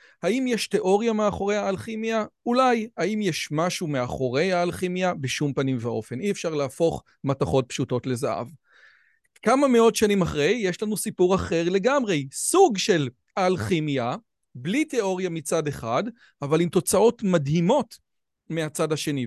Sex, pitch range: male, 150-220 Hz